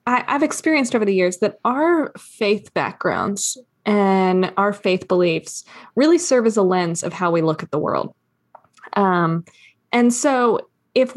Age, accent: 20-39, American